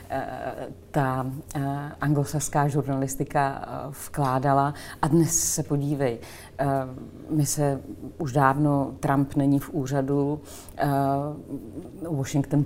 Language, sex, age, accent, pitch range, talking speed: Czech, female, 40-59, native, 130-145 Hz, 80 wpm